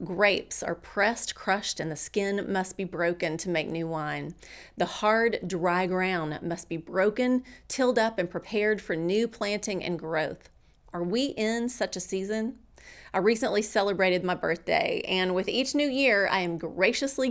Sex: female